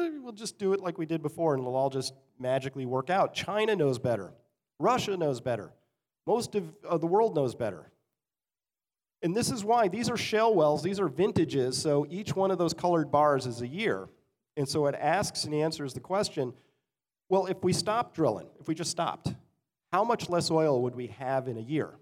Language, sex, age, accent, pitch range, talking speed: English, male, 40-59, American, 125-165 Hz, 205 wpm